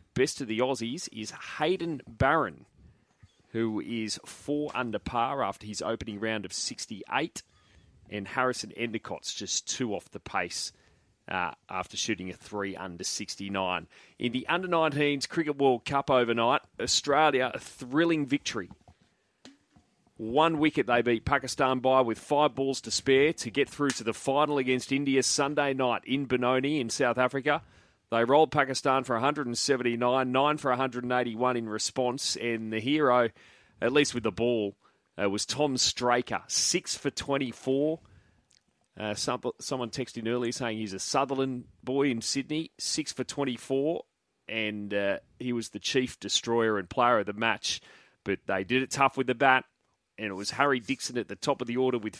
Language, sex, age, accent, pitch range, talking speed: English, male, 30-49, Australian, 110-140 Hz, 165 wpm